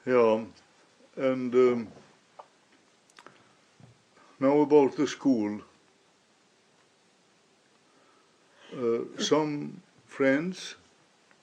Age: 60-79